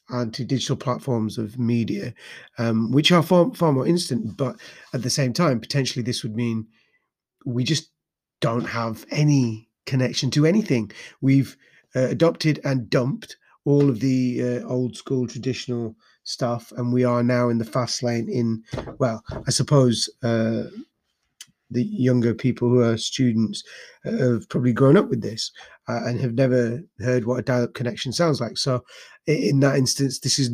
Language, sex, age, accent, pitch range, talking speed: English, male, 30-49, British, 115-140 Hz, 165 wpm